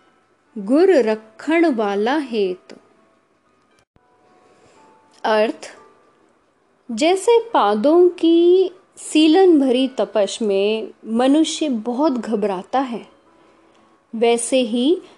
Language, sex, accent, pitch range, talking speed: Hindi, female, native, 230-320 Hz, 70 wpm